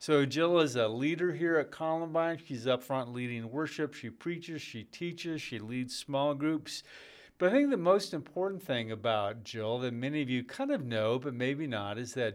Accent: American